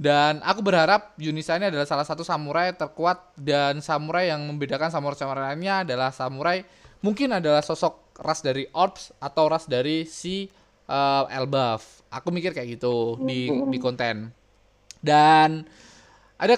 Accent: native